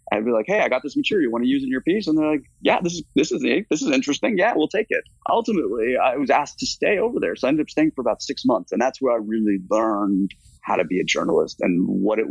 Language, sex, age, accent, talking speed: English, male, 30-49, American, 300 wpm